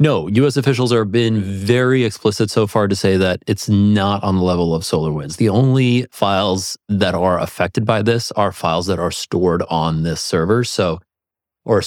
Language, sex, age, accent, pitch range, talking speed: English, male, 30-49, American, 90-110 Hz, 185 wpm